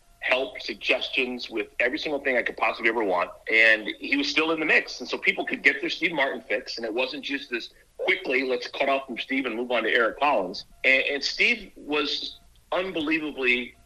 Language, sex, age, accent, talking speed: English, male, 50-69, American, 210 wpm